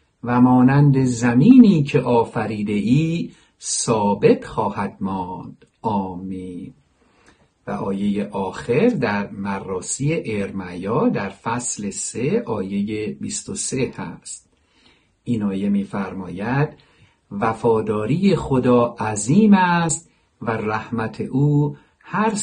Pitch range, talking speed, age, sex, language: 110-150 Hz, 90 wpm, 50-69, male, Persian